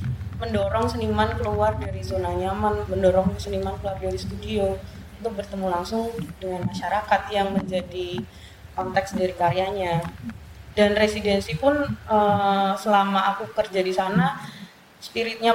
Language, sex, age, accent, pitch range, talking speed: Indonesian, female, 20-39, native, 180-210 Hz, 115 wpm